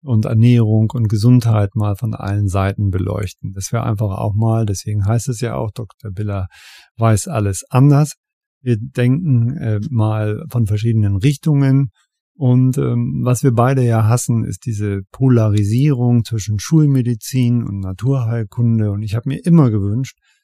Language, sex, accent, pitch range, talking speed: German, male, German, 110-130 Hz, 150 wpm